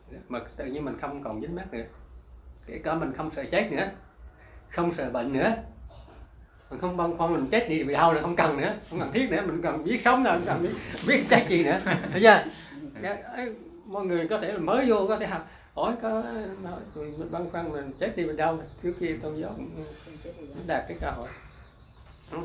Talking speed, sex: 210 wpm, male